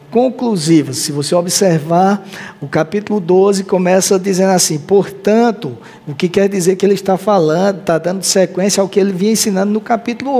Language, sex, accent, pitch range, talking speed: Portuguese, male, Brazilian, 160-205 Hz, 165 wpm